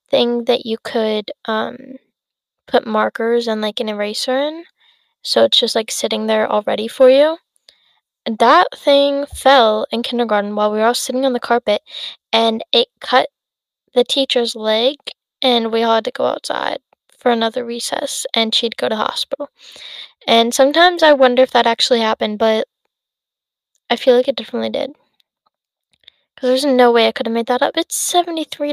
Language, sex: English, female